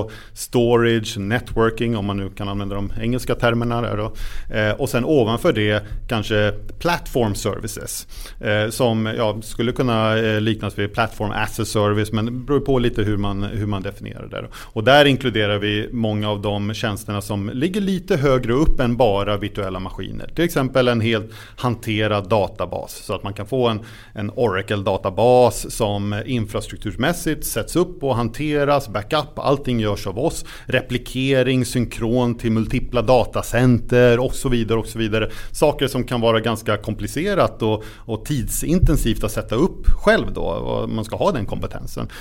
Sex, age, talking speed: male, 30-49, 170 wpm